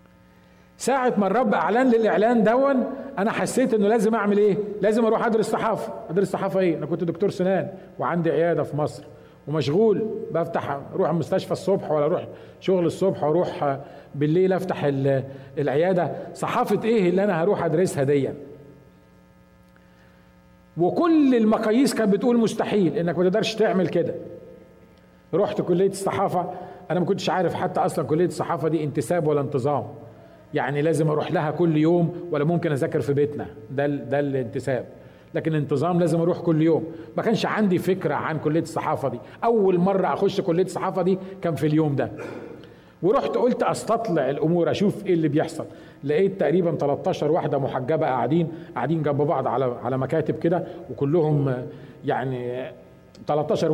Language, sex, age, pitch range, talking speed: Arabic, male, 40-59, 145-190 Hz, 150 wpm